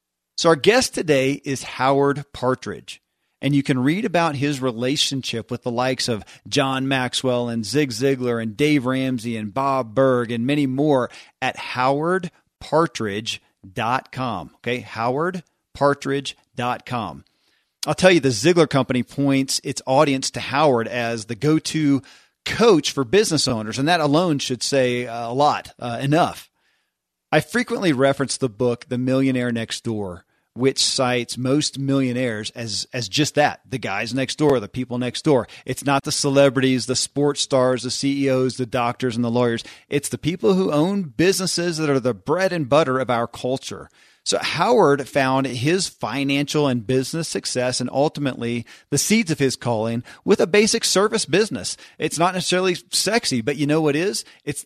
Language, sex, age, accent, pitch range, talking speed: English, male, 40-59, American, 125-145 Hz, 165 wpm